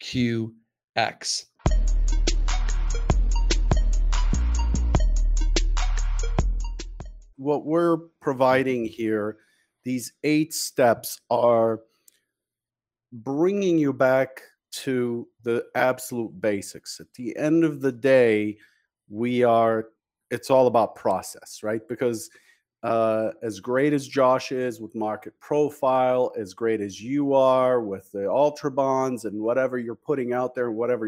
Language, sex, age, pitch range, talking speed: English, male, 50-69, 115-140 Hz, 105 wpm